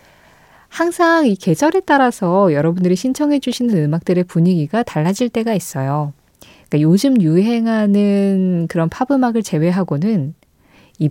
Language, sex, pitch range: Korean, female, 165-220 Hz